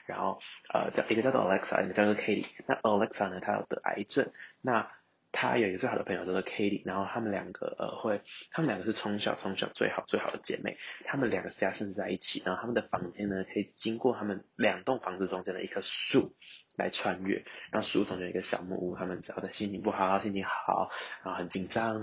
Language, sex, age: Chinese, male, 20-39